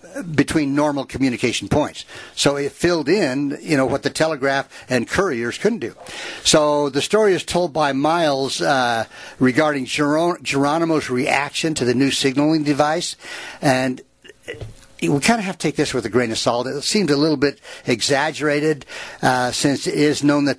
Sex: male